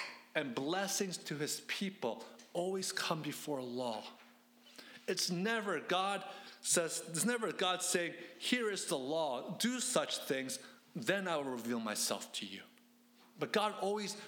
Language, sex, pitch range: English, male, 155-215 Hz